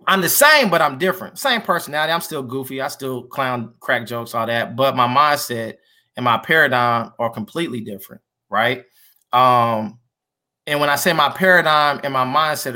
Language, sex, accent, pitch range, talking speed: English, male, American, 130-165 Hz, 180 wpm